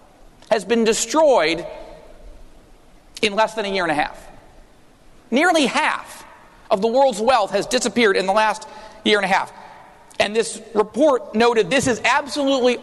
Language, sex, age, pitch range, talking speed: English, male, 40-59, 215-270 Hz, 155 wpm